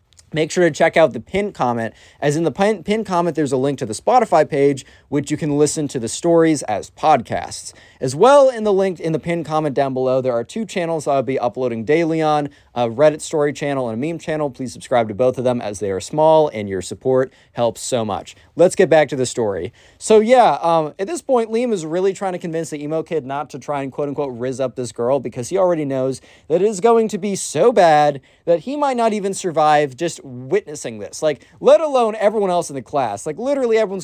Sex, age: male, 20-39